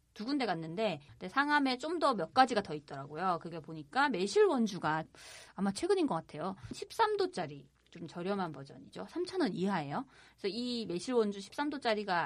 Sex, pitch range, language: female, 175-275 Hz, Korean